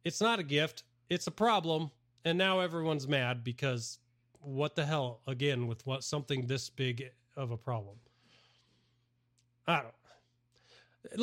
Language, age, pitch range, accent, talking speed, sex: English, 30-49, 120-195 Hz, American, 145 wpm, male